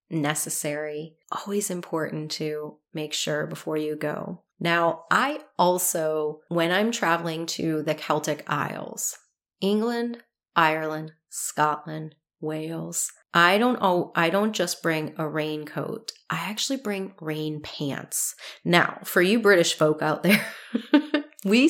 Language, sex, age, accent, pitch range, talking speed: English, female, 30-49, American, 155-200 Hz, 125 wpm